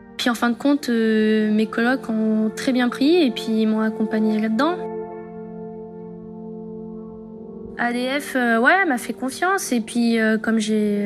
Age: 20-39